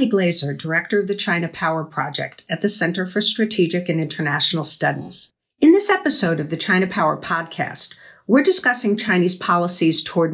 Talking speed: 165 wpm